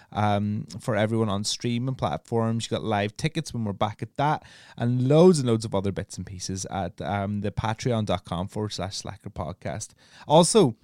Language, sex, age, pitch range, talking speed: English, male, 20-39, 105-120 Hz, 190 wpm